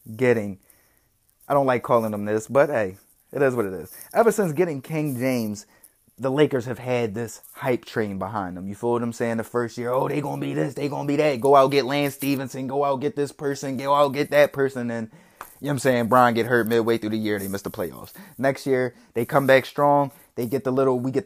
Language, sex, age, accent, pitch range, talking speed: English, male, 20-39, American, 120-150 Hz, 255 wpm